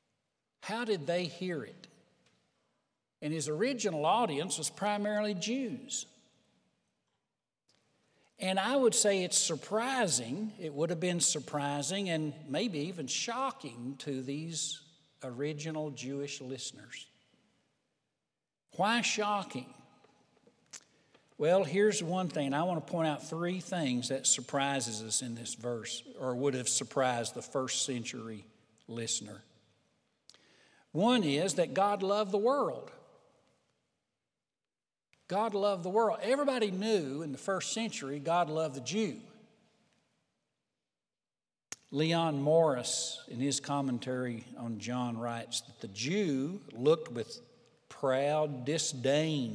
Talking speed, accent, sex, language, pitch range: 115 wpm, American, male, English, 135-205 Hz